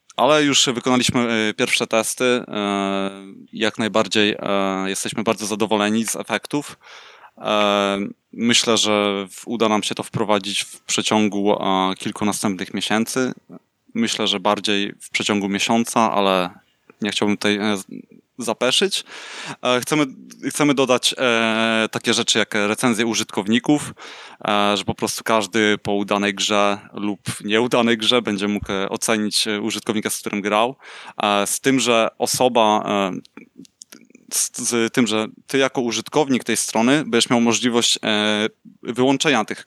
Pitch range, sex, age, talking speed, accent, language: 105-120 Hz, male, 20-39, 115 wpm, native, Polish